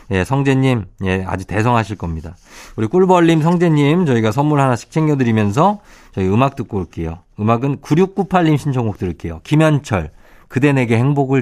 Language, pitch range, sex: Korean, 100-155 Hz, male